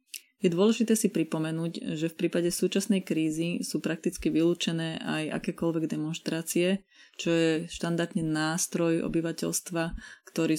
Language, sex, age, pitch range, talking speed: Slovak, female, 20-39, 160-195 Hz, 120 wpm